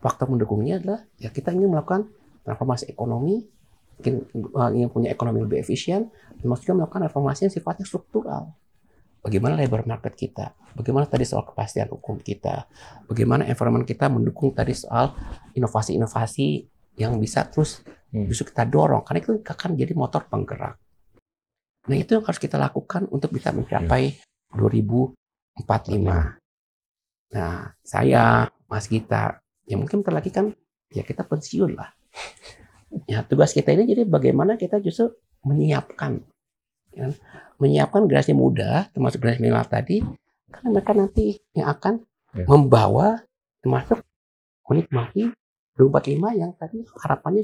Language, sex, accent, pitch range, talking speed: Indonesian, male, native, 115-190 Hz, 125 wpm